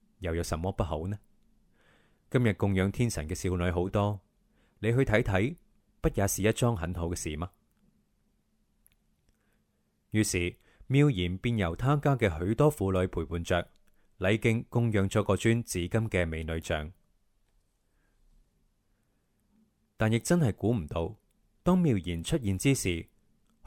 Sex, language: male, Chinese